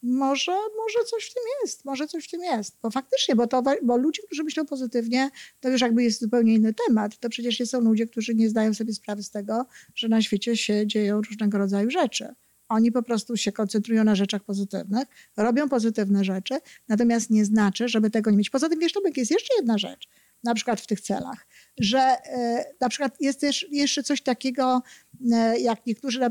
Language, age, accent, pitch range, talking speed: Polish, 50-69, native, 220-280 Hz, 200 wpm